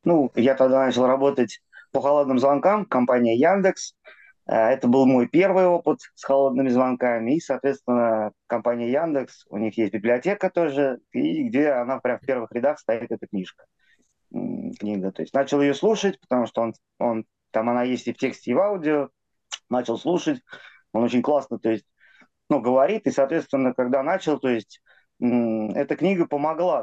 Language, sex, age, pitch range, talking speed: Russian, male, 20-39, 120-160 Hz, 165 wpm